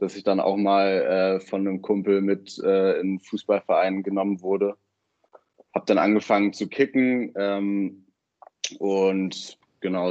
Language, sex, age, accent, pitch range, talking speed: German, male, 20-39, German, 95-105 Hz, 140 wpm